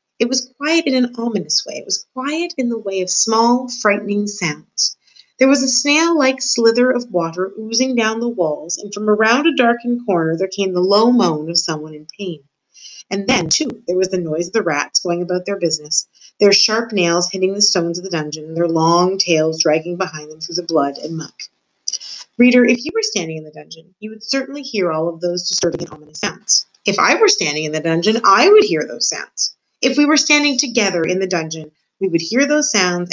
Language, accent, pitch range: English, American, 165-245 Hz